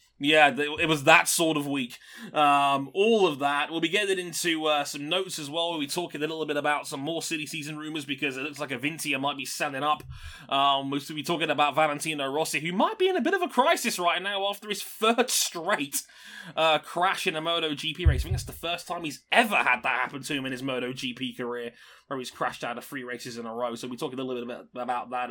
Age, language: 20-39, English